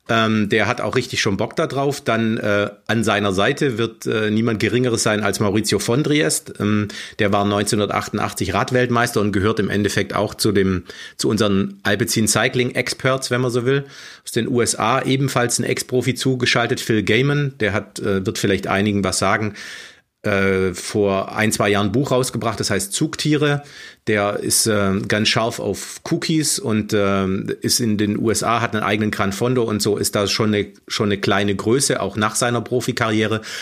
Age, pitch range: 40-59, 100-125 Hz